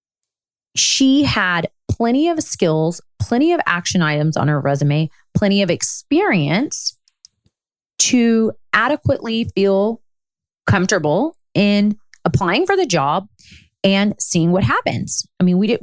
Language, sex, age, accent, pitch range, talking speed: English, female, 30-49, American, 165-230 Hz, 120 wpm